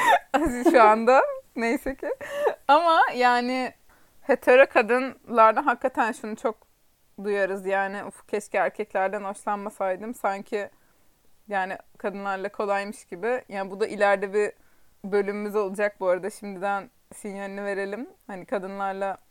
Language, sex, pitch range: Turkish, female, 200-255 Hz